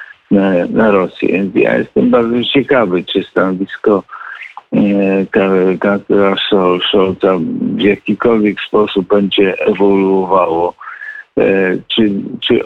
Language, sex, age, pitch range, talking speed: Polish, male, 50-69, 90-100 Hz, 75 wpm